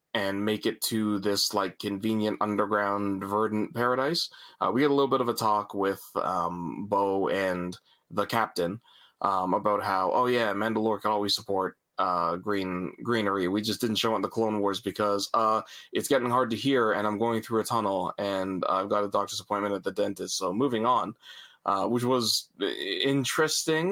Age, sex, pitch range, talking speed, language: 20-39, male, 105-130 Hz, 190 wpm, English